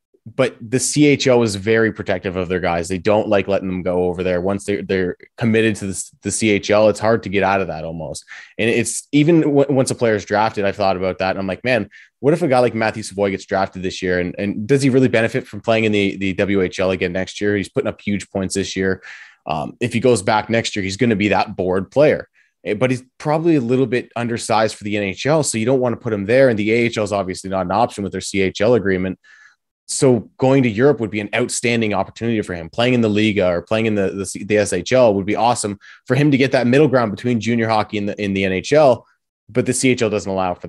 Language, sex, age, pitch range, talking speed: English, male, 20-39, 95-120 Hz, 255 wpm